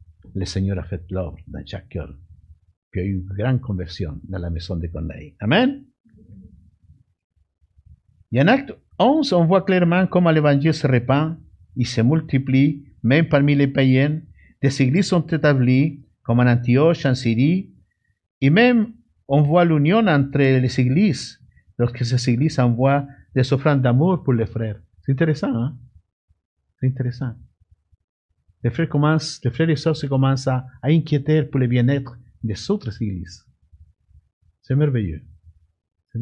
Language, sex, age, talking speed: French, male, 50-69, 150 wpm